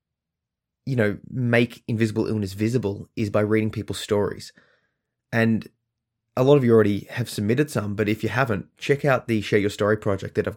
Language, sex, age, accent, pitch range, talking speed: English, male, 20-39, Australian, 100-115 Hz, 185 wpm